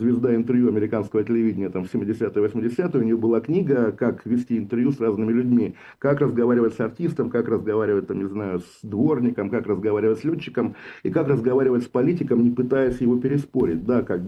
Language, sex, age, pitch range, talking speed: Russian, male, 50-69, 105-125 Hz, 180 wpm